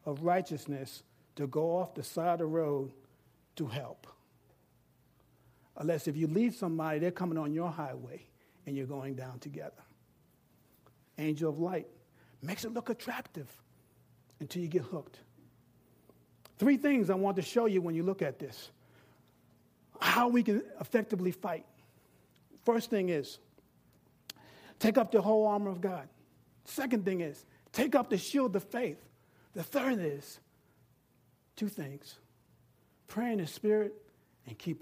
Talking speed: 145 wpm